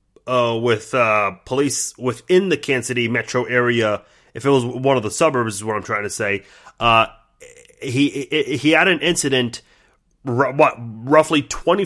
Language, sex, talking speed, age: English, male, 165 wpm, 30-49